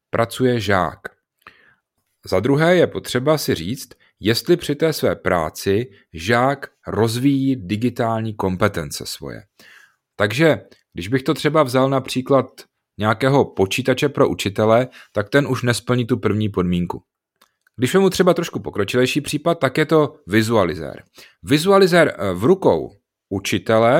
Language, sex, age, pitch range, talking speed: Czech, male, 30-49, 105-135 Hz, 125 wpm